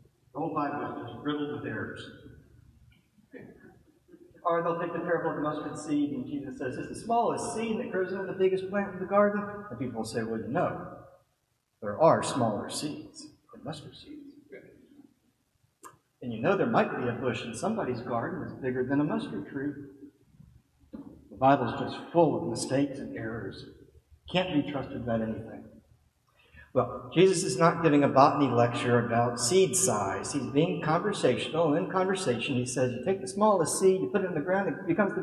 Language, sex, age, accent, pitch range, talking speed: English, male, 50-69, American, 130-190 Hz, 185 wpm